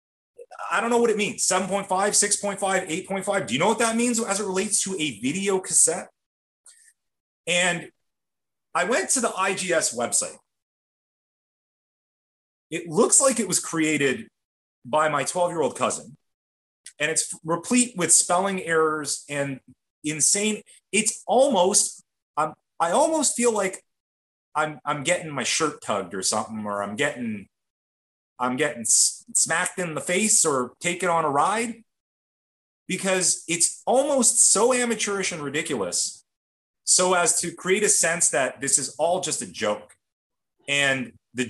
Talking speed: 145 wpm